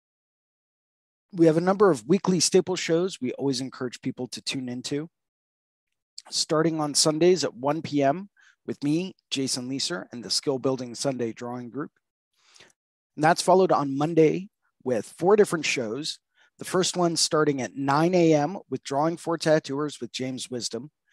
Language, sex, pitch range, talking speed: English, male, 130-165 Hz, 155 wpm